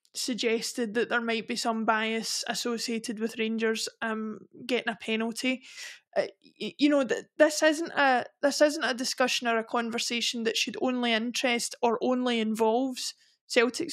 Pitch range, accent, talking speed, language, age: 225-270 Hz, British, 160 wpm, English, 20-39